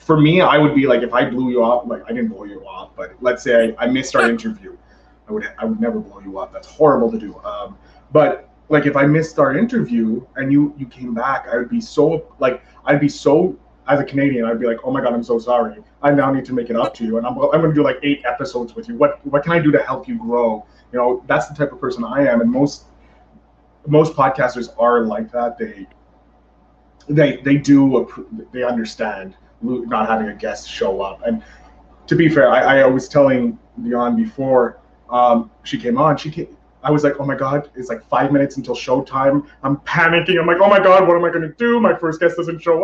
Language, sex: English, male